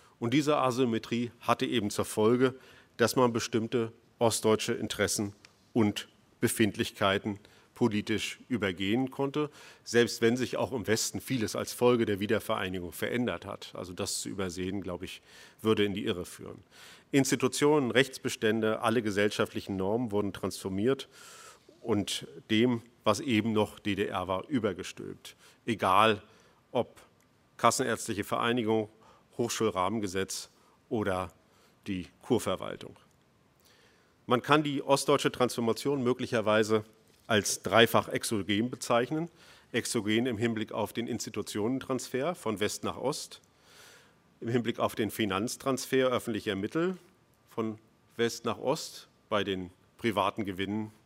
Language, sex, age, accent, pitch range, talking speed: German, male, 40-59, German, 105-125 Hz, 115 wpm